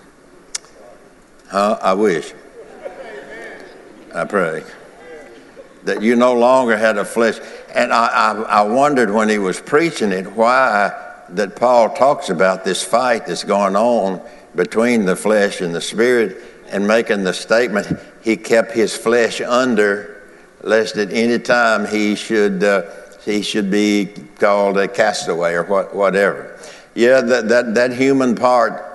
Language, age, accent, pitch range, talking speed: English, 60-79, American, 100-115 Hz, 145 wpm